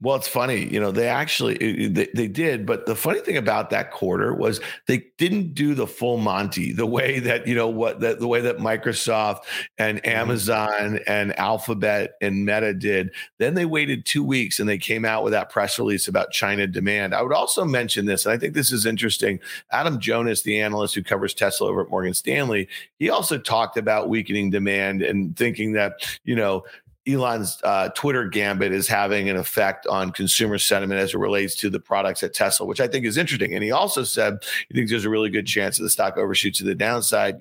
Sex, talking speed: male, 215 wpm